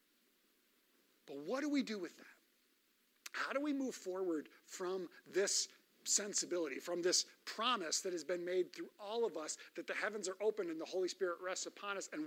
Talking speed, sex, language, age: 190 wpm, male, English, 50-69